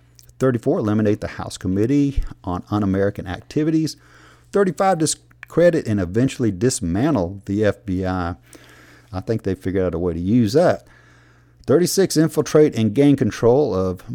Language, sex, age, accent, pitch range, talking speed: English, male, 50-69, American, 95-120 Hz, 130 wpm